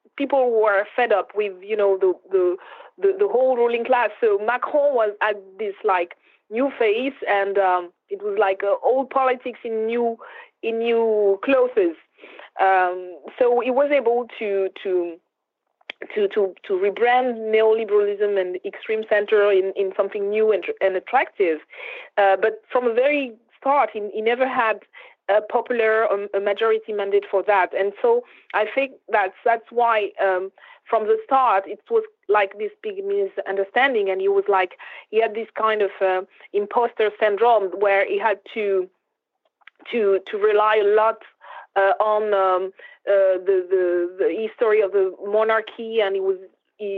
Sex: female